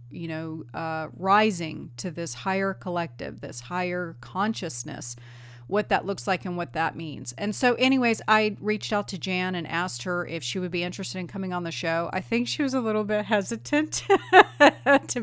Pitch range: 165-210 Hz